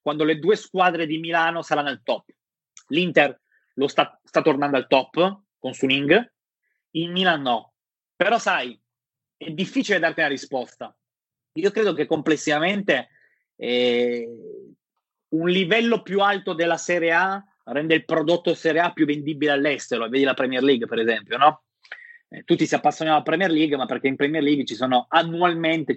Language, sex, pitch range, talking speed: Persian, male, 135-175 Hz, 160 wpm